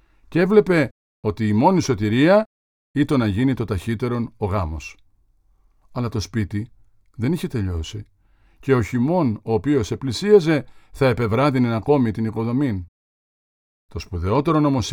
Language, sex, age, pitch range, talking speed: Greek, male, 50-69, 105-140 Hz, 135 wpm